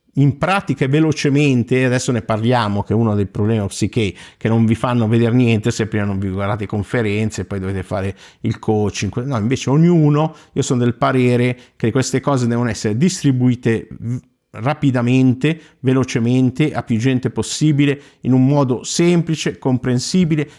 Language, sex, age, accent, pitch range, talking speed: Italian, male, 50-69, native, 110-145 Hz, 155 wpm